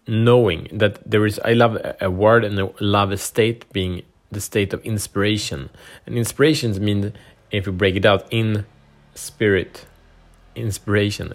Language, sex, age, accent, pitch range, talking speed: Swedish, male, 30-49, Norwegian, 95-125 Hz, 155 wpm